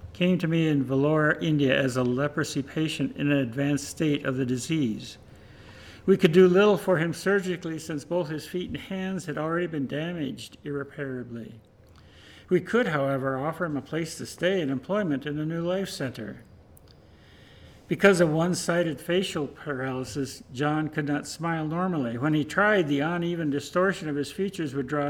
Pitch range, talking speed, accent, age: 130-170 Hz, 170 wpm, American, 60-79